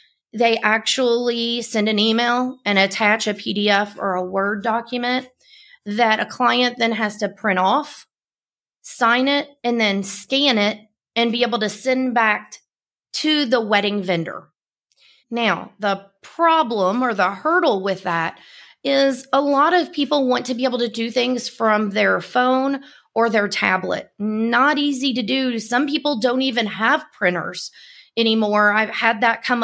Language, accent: English, American